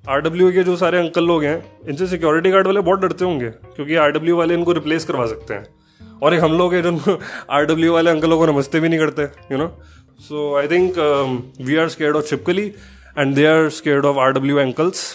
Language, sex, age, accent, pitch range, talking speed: Hindi, male, 20-39, native, 135-170 Hz, 225 wpm